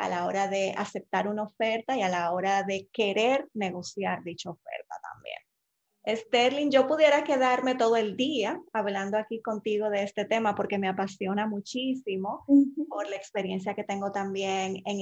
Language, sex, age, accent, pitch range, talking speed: Spanish, female, 20-39, American, 195-225 Hz, 165 wpm